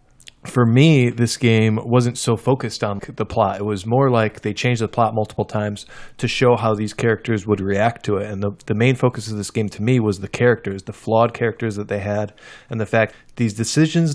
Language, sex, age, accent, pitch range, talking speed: English, male, 20-39, American, 105-120 Hz, 225 wpm